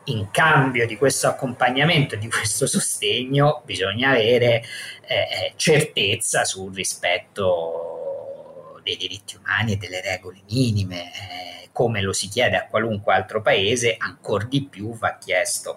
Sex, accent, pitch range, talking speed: male, native, 105-155 Hz, 135 wpm